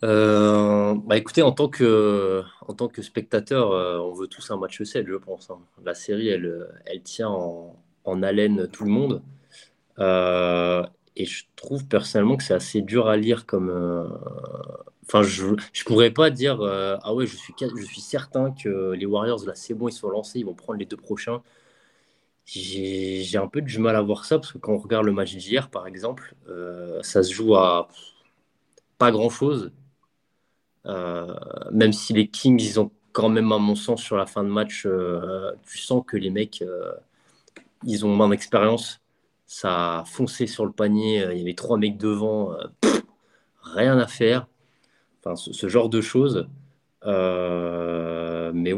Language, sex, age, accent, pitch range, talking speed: French, male, 20-39, French, 95-120 Hz, 190 wpm